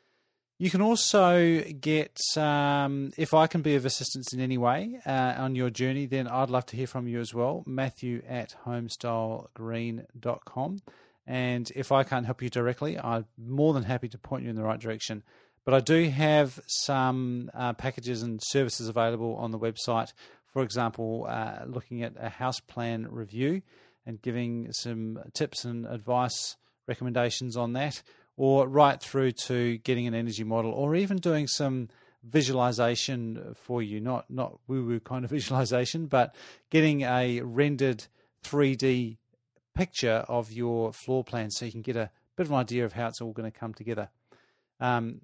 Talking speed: 170 wpm